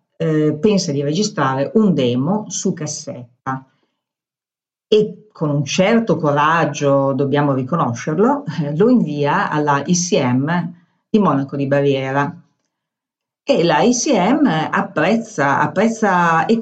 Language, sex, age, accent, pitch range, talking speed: Italian, female, 50-69, native, 150-210 Hz, 100 wpm